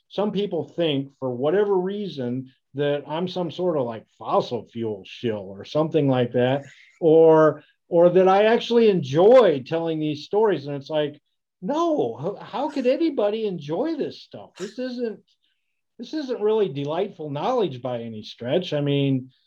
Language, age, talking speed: English, 50-69, 155 wpm